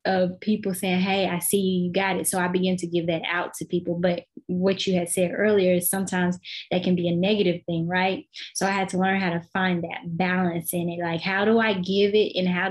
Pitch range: 175-195 Hz